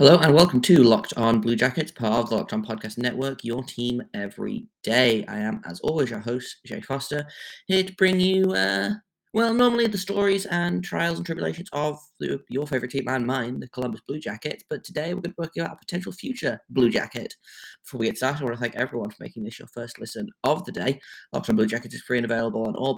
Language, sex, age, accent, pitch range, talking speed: English, male, 20-39, British, 120-170 Hz, 240 wpm